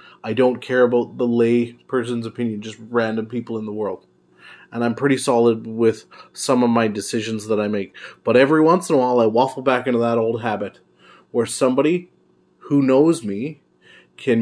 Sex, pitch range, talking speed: male, 110-135 Hz, 185 wpm